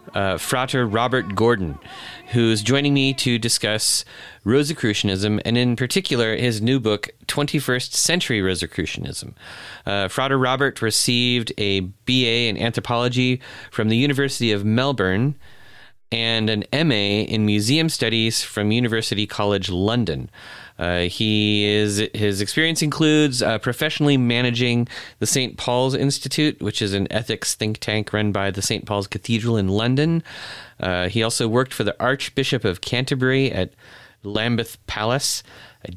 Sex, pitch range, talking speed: male, 100-130 Hz, 135 wpm